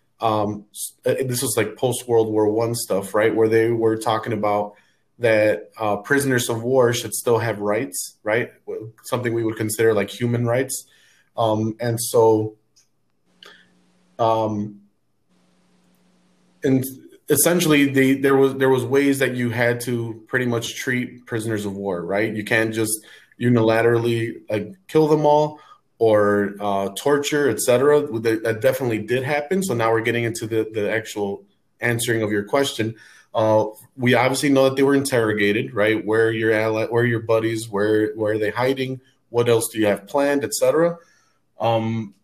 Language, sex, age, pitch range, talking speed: English, male, 30-49, 110-130 Hz, 155 wpm